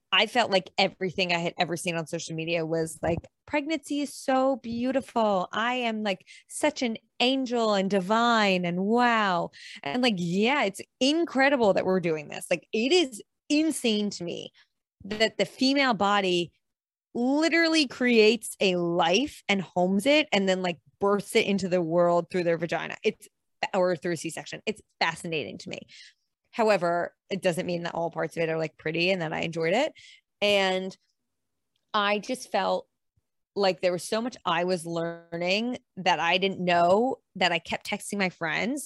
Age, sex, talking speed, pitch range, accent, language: 20-39, female, 175 wpm, 180-230 Hz, American, English